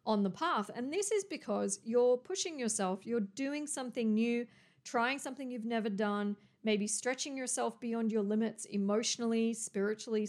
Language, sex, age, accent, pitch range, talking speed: English, female, 40-59, Australian, 200-245 Hz, 155 wpm